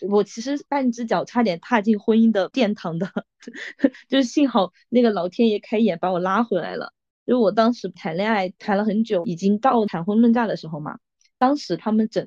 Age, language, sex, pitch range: 20-39, Chinese, female, 180-240 Hz